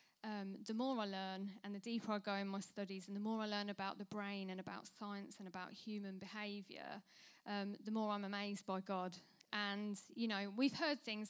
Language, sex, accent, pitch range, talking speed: English, female, British, 205-235 Hz, 220 wpm